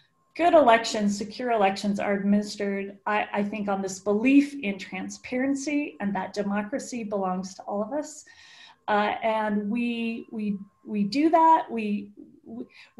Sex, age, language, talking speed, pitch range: female, 30-49, English, 140 wpm, 205-255 Hz